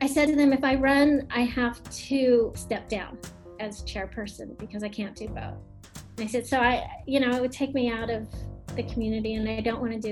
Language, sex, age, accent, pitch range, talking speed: English, female, 30-49, American, 220-275 Hz, 230 wpm